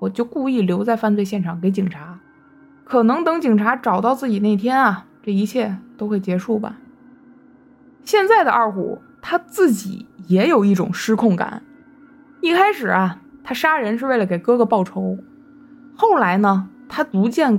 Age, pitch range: 20-39, 205-280 Hz